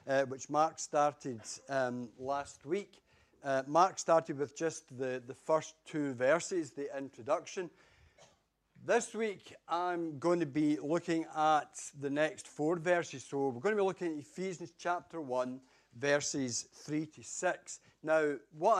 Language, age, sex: English, 60-79, male